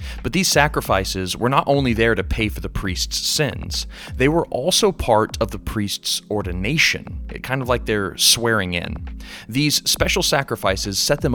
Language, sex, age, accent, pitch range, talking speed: English, male, 30-49, American, 100-150 Hz, 170 wpm